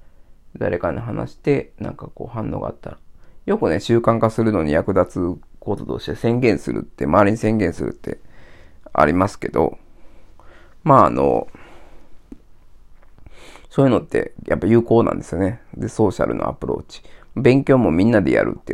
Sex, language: male, Japanese